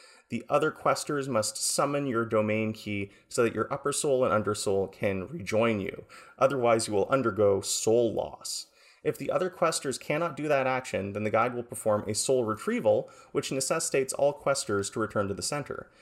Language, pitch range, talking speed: English, 105-145 Hz, 185 wpm